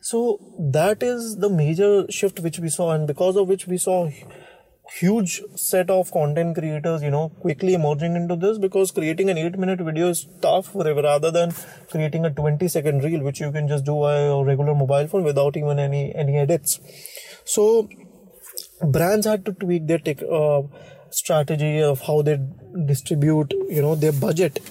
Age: 20-39